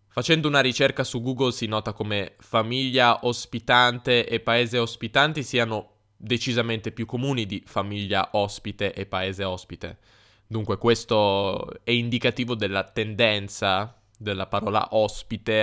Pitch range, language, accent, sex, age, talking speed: 105-125 Hz, Italian, native, male, 10-29, 125 wpm